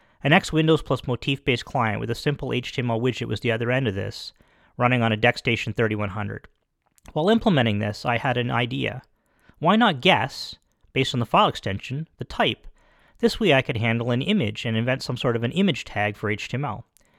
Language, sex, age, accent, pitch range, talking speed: English, male, 40-59, American, 115-150 Hz, 200 wpm